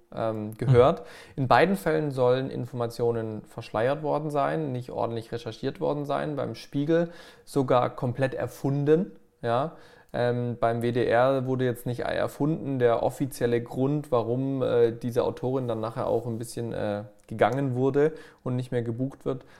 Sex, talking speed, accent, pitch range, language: male, 145 wpm, German, 115-145 Hz, German